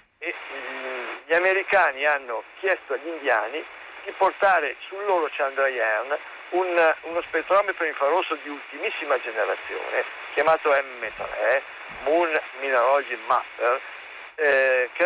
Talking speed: 105 wpm